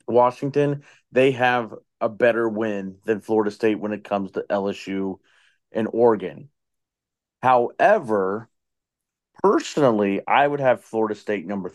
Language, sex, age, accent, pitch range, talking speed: English, male, 30-49, American, 105-125 Hz, 125 wpm